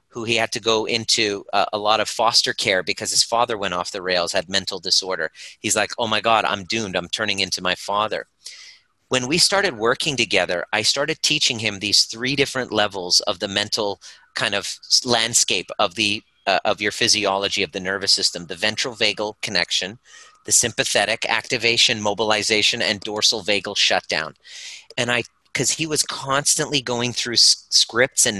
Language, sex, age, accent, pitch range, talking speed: English, male, 40-59, American, 105-125 Hz, 180 wpm